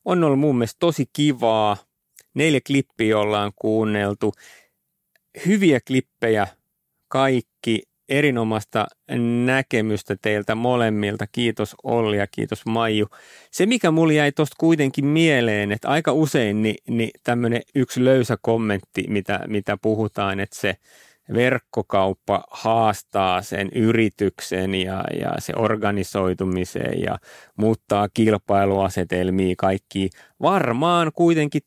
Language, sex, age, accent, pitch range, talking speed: Finnish, male, 30-49, native, 105-135 Hz, 110 wpm